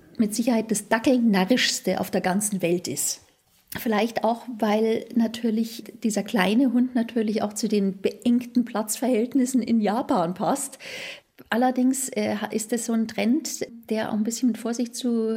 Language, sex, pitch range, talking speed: German, female, 210-245 Hz, 150 wpm